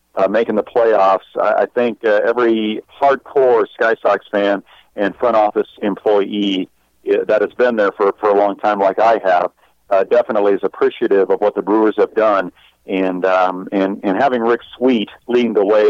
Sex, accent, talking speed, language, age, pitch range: male, American, 195 wpm, English, 50-69, 100-135 Hz